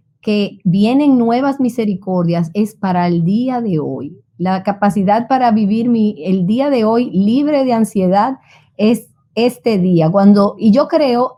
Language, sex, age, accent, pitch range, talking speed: Spanish, female, 30-49, American, 170-225 Hz, 155 wpm